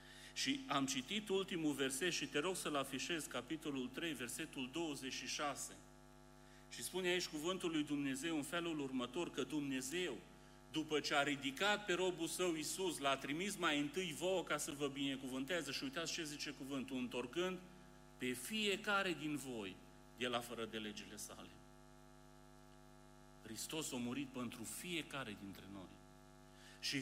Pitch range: 110-155 Hz